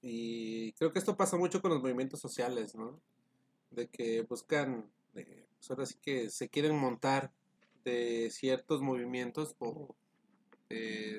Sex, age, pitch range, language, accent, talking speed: male, 30-49, 125-155 Hz, Spanish, Mexican, 145 wpm